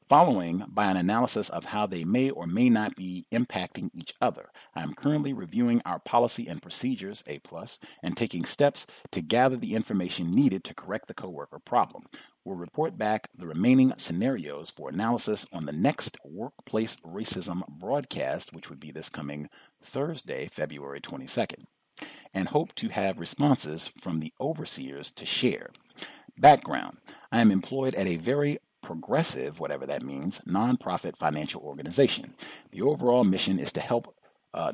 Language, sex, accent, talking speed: English, male, American, 155 wpm